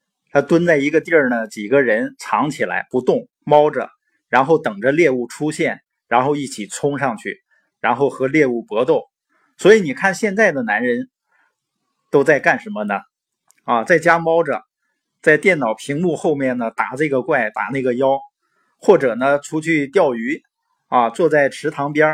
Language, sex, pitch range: Chinese, male, 140-220 Hz